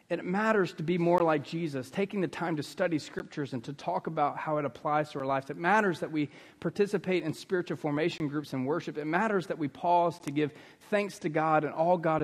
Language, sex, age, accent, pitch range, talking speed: English, male, 40-59, American, 145-180 Hz, 230 wpm